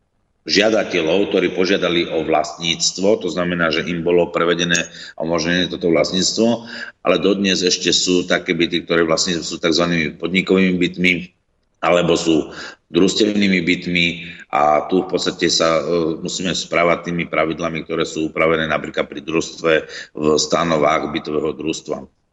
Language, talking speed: Slovak, 135 wpm